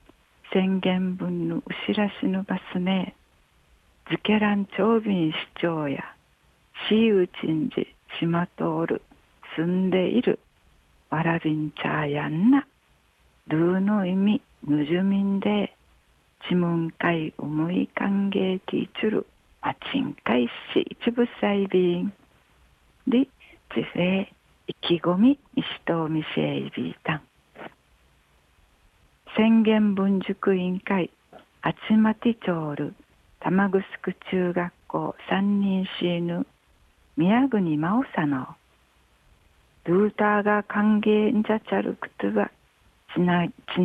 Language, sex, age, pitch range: Japanese, female, 60-79, 155-210 Hz